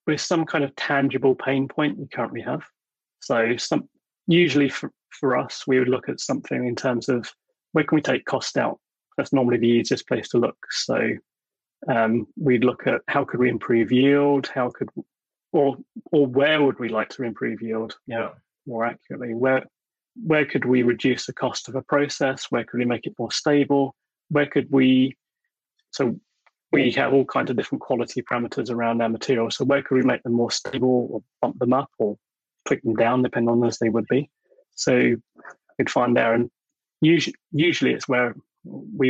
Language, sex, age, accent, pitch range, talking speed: English, male, 30-49, British, 120-140 Hz, 195 wpm